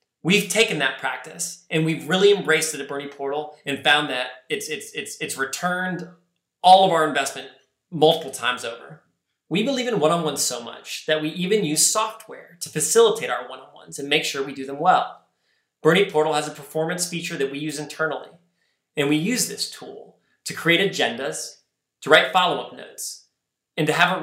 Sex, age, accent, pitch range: male, 20-39, American, 140-180 Hz